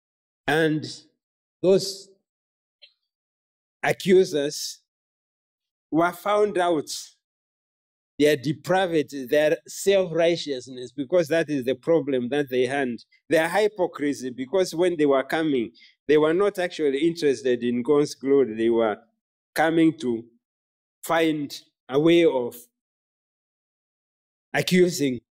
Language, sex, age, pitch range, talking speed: English, male, 50-69, 130-170 Hz, 100 wpm